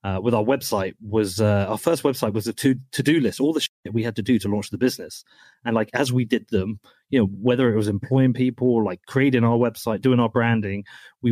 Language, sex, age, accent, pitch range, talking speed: English, male, 30-49, British, 105-130 Hz, 255 wpm